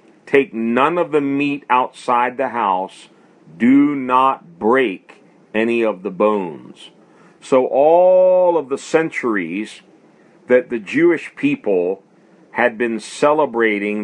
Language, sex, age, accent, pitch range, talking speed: English, male, 40-59, American, 110-145 Hz, 115 wpm